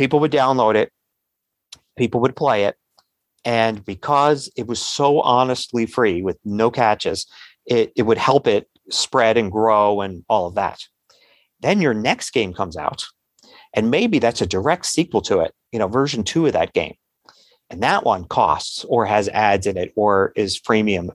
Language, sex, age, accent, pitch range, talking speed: English, male, 40-59, American, 110-140 Hz, 180 wpm